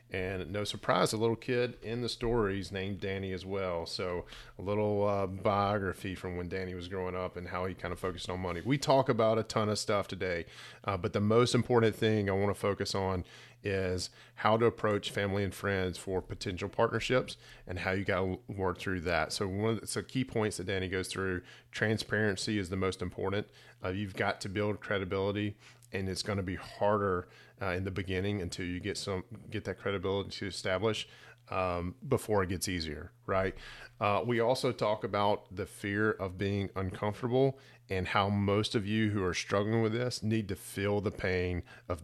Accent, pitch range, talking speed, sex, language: American, 90-110 Hz, 200 wpm, male, English